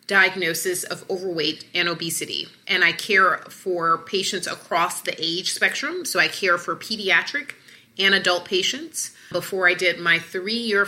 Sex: female